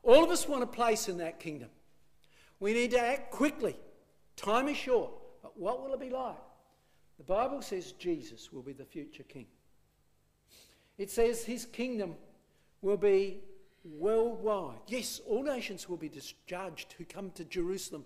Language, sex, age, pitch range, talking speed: English, male, 60-79, 195-260 Hz, 165 wpm